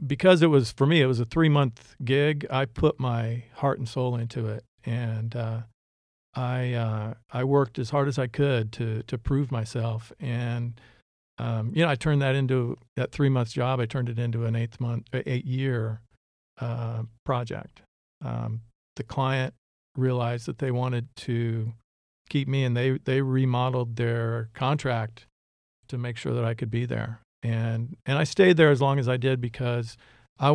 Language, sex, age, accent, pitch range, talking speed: English, male, 50-69, American, 115-135 Hz, 175 wpm